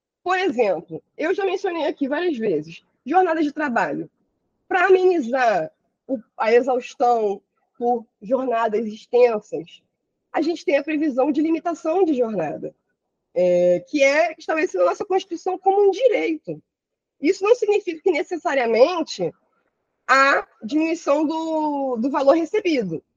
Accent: Brazilian